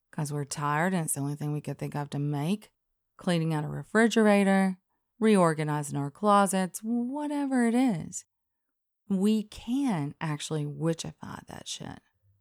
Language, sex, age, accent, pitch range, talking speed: English, female, 30-49, American, 150-195 Hz, 145 wpm